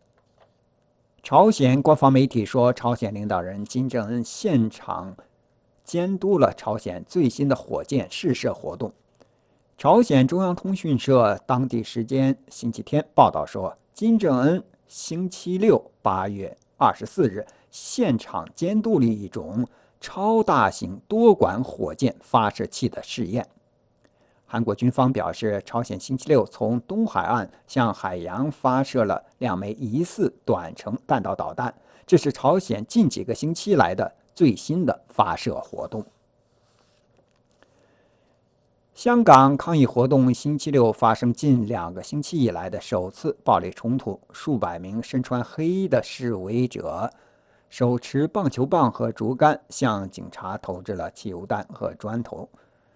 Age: 60-79